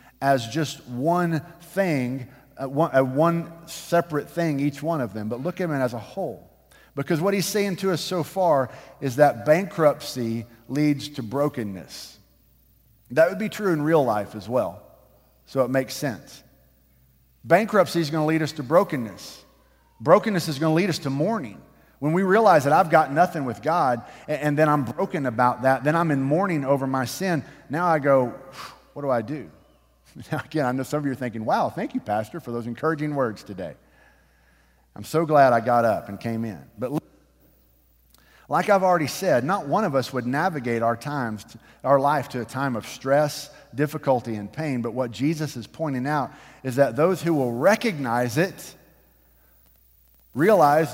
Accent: American